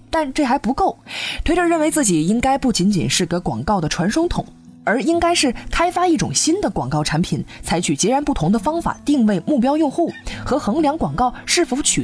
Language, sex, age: Chinese, female, 20-39